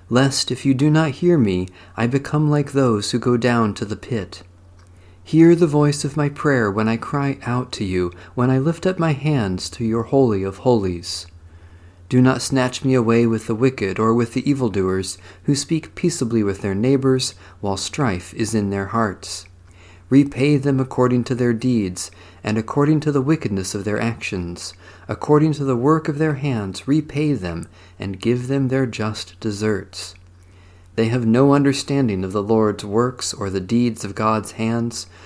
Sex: male